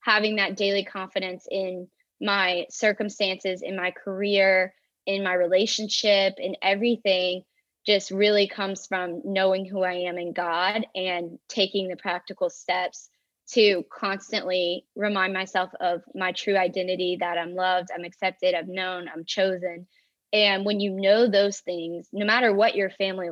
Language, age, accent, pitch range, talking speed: English, 20-39, American, 180-205 Hz, 150 wpm